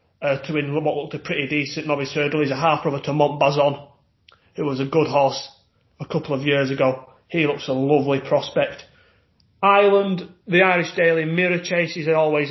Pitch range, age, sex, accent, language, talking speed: 135-160 Hz, 30-49, male, British, English, 185 wpm